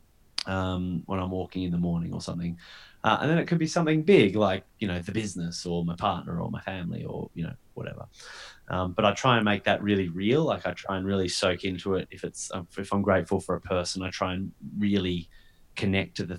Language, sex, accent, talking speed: English, male, Australian, 235 wpm